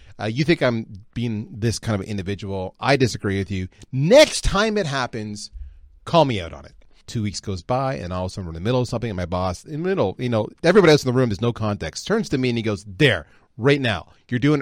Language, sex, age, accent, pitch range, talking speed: English, male, 30-49, American, 105-155 Hz, 265 wpm